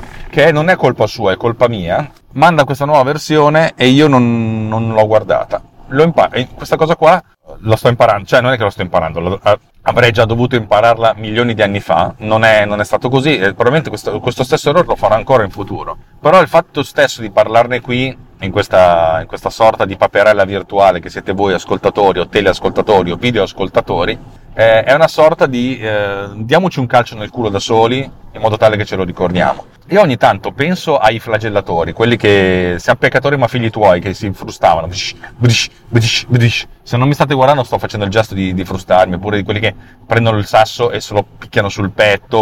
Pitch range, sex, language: 105-130 Hz, male, Italian